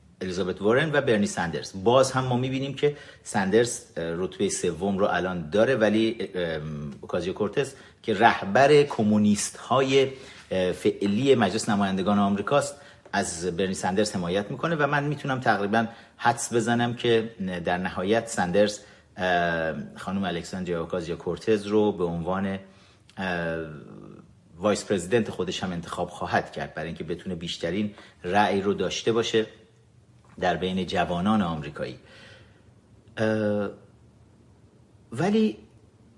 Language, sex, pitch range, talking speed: Persian, male, 95-120 Hz, 110 wpm